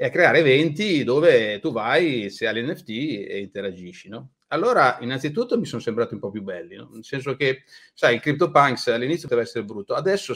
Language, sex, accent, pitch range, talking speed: Italian, male, native, 120-170 Hz, 190 wpm